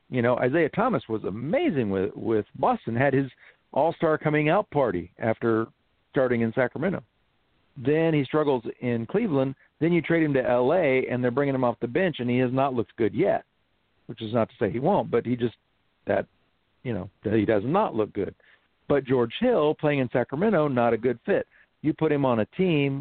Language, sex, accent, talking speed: English, male, American, 210 wpm